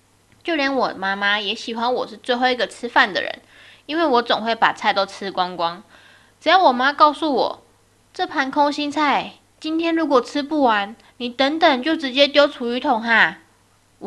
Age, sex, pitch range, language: 10-29, female, 210-290 Hz, Chinese